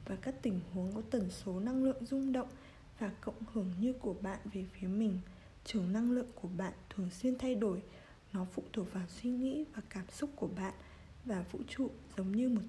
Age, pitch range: 20-39, 190-250 Hz